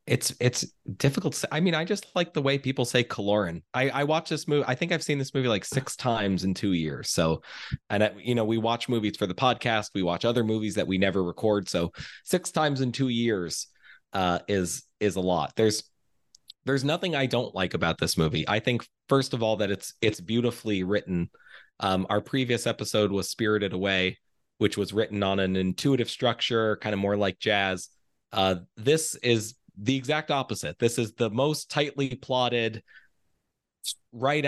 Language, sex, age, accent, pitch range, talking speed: English, male, 30-49, American, 100-125 Hz, 195 wpm